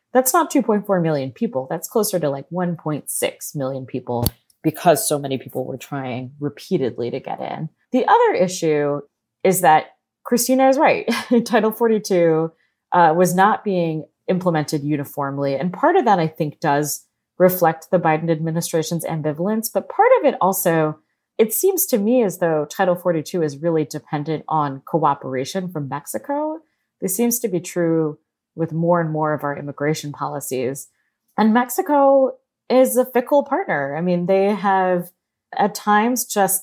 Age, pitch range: 30-49, 145-195 Hz